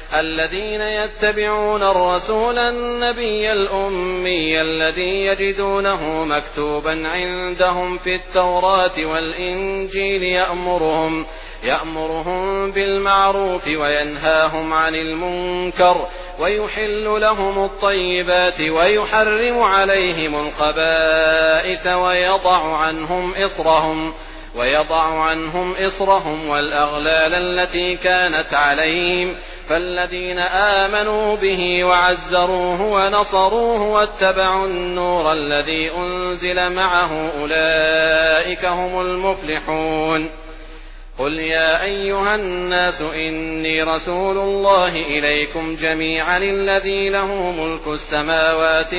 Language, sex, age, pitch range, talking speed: English, male, 40-59, 160-195 Hz, 70 wpm